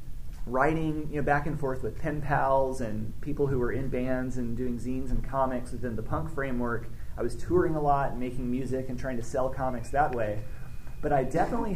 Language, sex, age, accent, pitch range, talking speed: English, male, 30-49, American, 115-140 Hz, 215 wpm